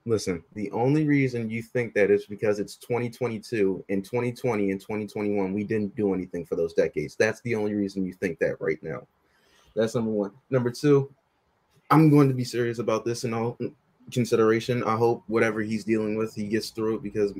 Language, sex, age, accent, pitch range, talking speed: English, male, 20-39, American, 100-120 Hz, 195 wpm